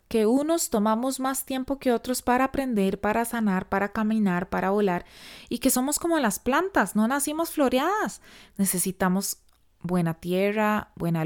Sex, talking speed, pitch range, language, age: female, 150 wpm, 195-265 Hz, Spanish, 20-39